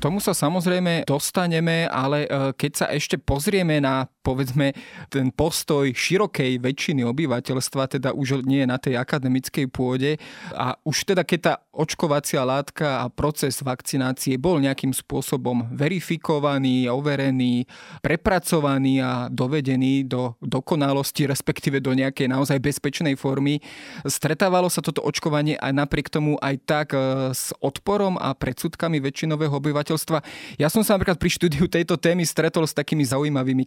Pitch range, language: 135-160 Hz, Slovak